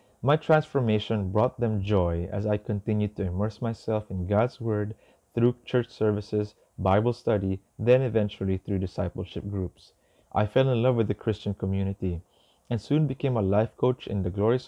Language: English